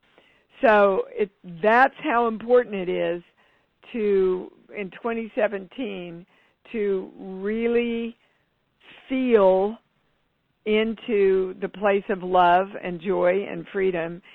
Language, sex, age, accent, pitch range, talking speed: English, female, 60-79, American, 190-230 Hz, 90 wpm